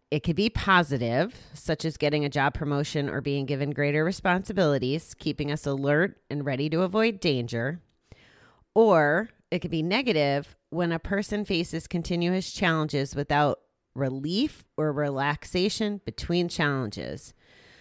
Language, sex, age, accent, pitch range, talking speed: English, female, 30-49, American, 140-195 Hz, 135 wpm